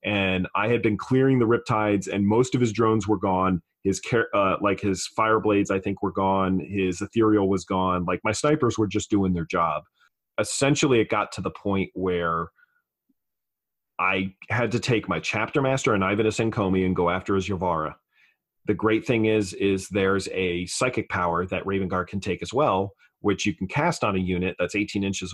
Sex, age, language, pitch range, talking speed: male, 30-49, English, 95-110 Hz, 200 wpm